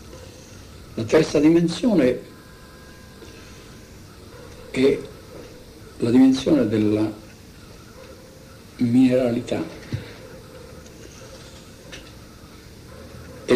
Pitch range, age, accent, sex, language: 95-120 Hz, 60-79, native, male, Italian